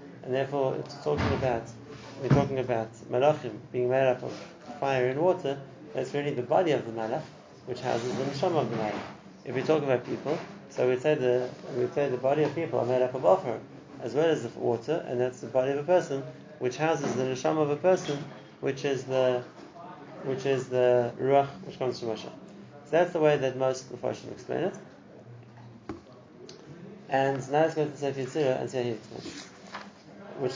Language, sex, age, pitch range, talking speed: English, male, 30-49, 125-150 Hz, 195 wpm